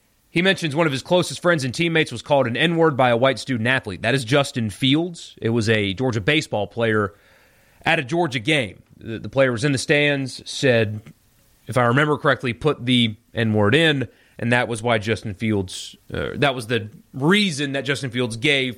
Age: 30-49